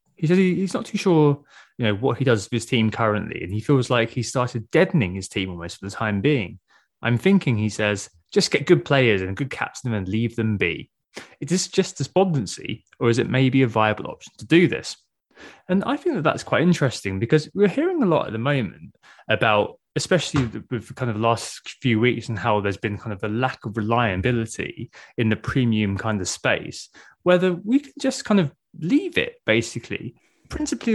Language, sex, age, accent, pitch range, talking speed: English, male, 20-39, British, 110-170 Hz, 210 wpm